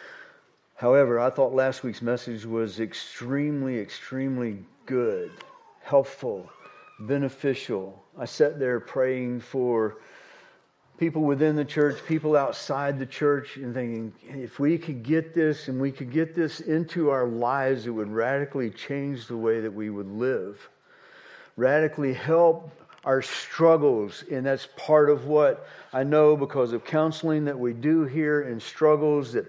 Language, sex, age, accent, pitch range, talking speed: English, male, 50-69, American, 120-155 Hz, 145 wpm